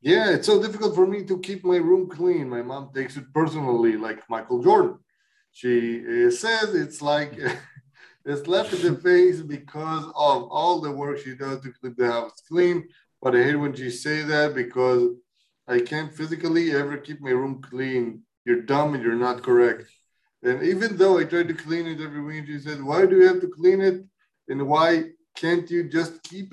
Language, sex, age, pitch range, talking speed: Hebrew, male, 20-39, 130-170 Hz, 195 wpm